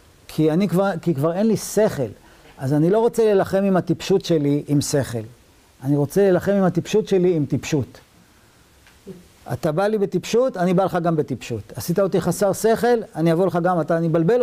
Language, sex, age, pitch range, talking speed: Hebrew, male, 50-69, 130-185 Hz, 190 wpm